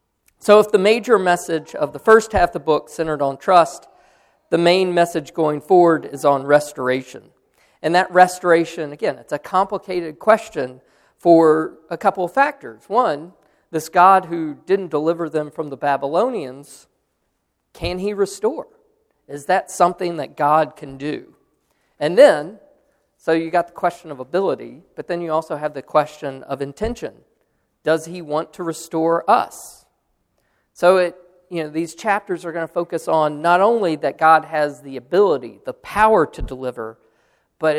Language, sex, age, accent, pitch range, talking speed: English, male, 40-59, American, 140-175 Hz, 165 wpm